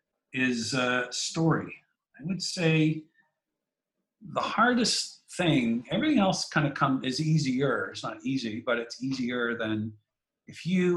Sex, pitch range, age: male, 120-160 Hz, 50-69